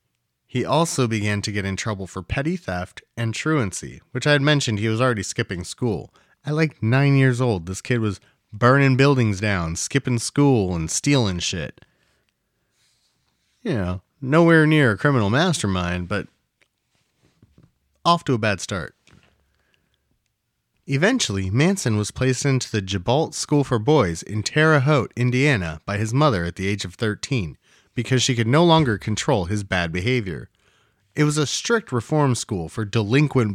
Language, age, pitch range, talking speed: English, 30-49, 100-135 Hz, 160 wpm